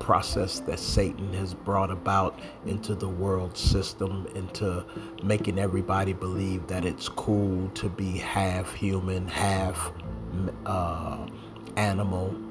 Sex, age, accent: male, 40-59, American